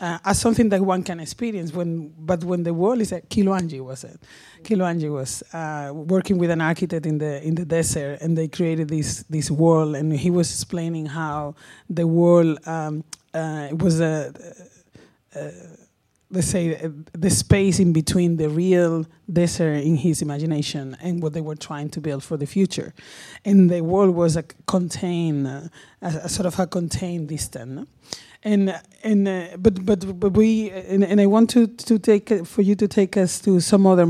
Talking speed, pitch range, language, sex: 190 wpm, 155-185 Hz, English, male